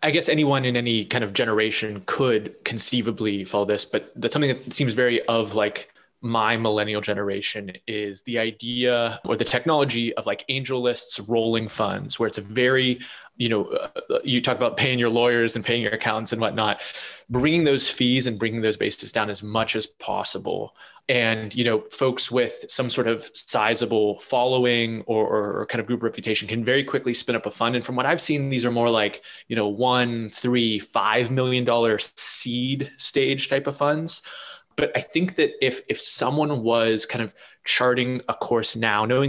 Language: English